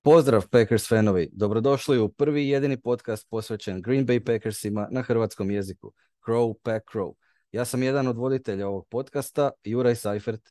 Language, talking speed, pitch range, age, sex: Croatian, 155 wpm, 100-120 Hz, 30-49, male